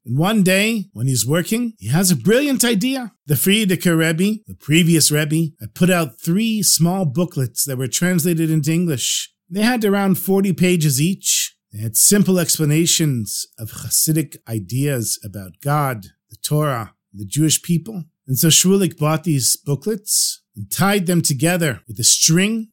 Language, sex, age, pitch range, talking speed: English, male, 50-69, 135-185 Hz, 165 wpm